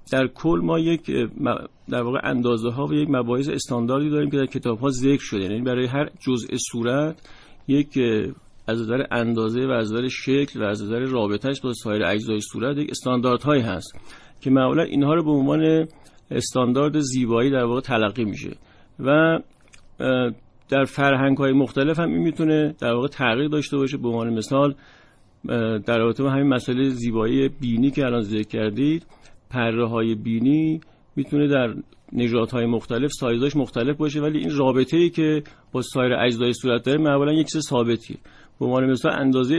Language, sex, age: Persian, male, 50-69